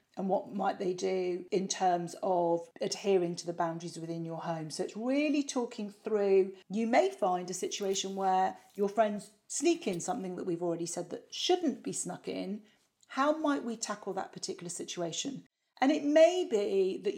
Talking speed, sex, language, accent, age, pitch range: 180 wpm, female, English, British, 40-59, 180-250 Hz